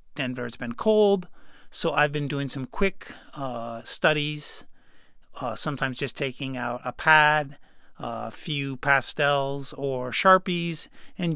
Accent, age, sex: American, 40-59, male